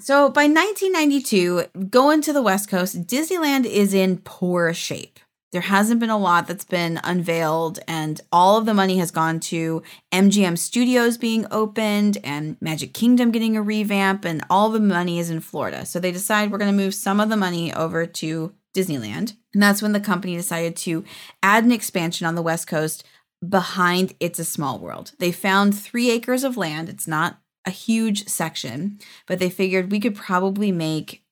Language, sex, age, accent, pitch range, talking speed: English, female, 20-39, American, 170-210 Hz, 185 wpm